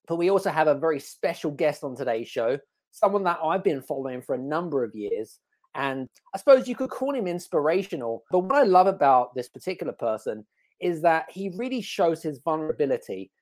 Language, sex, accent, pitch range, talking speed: English, male, British, 145-195 Hz, 195 wpm